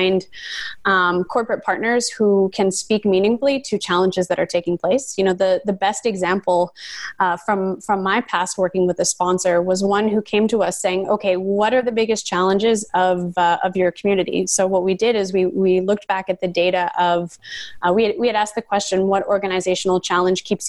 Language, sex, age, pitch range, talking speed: English, female, 20-39, 185-215 Hz, 205 wpm